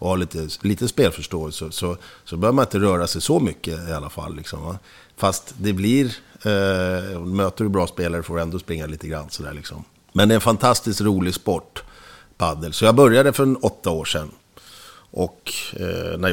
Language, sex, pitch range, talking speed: Swedish, male, 80-100 Hz, 200 wpm